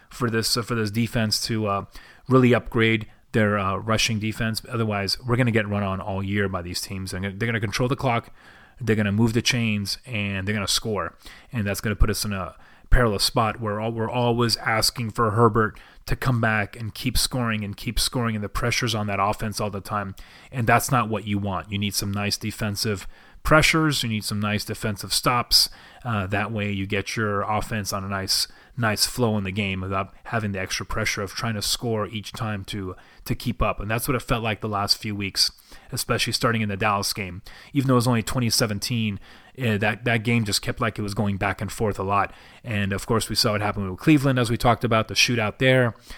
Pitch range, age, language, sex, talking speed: 100-120 Hz, 30-49, English, male, 235 wpm